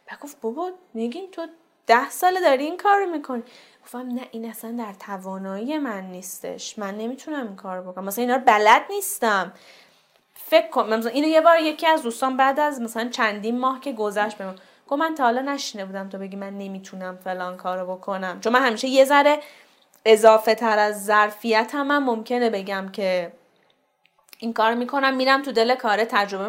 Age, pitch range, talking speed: 10-29, 210-275 Hz, 185 wpm